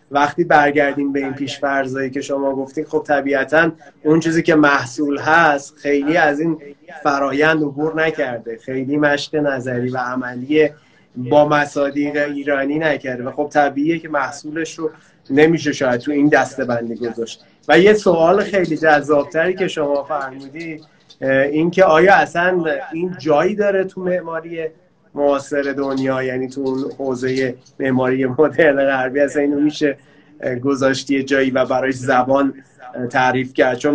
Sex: male